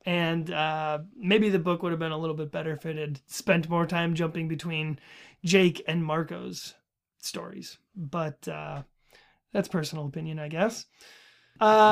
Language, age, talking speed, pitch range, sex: English, 30-49, 160 wpm, 160-205 Hz, male